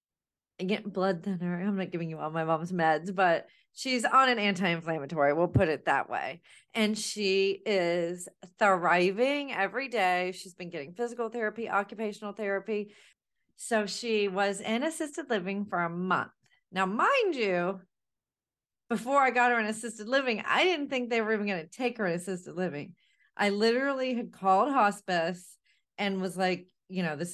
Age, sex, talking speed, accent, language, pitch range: 30-49, female, 170 wpm, American, English, 180-225 Hz